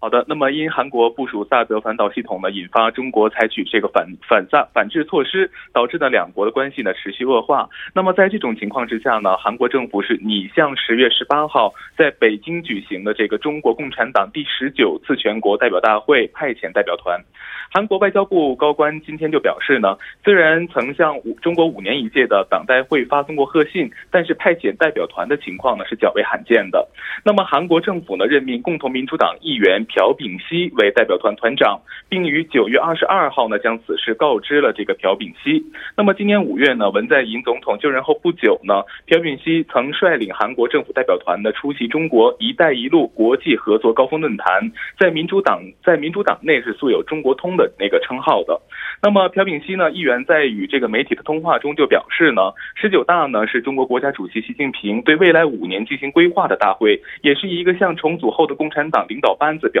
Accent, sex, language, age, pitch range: Chinese, male, Korean, 20-39, 135-205 Hz